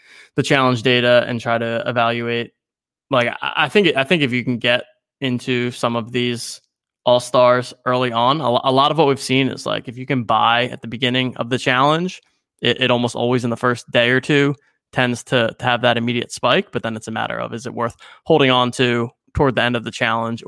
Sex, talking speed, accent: male, 225 wpm, American